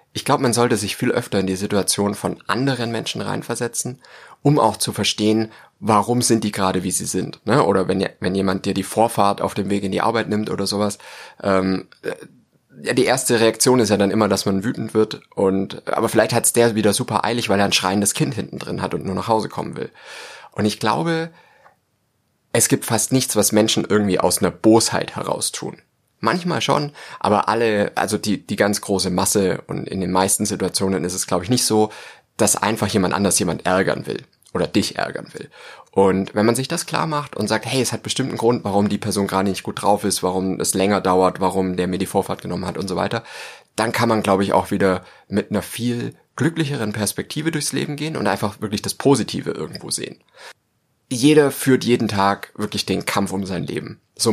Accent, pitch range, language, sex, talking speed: German, 95-120 Hz, German, male, 215 wpm